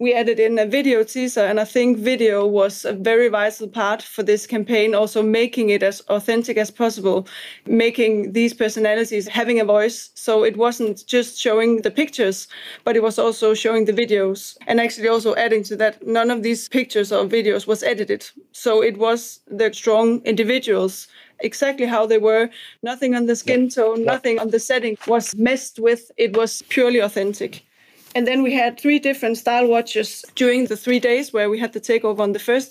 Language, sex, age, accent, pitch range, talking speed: English, female, 30-49, German, 215-240 Hz, 195 wpm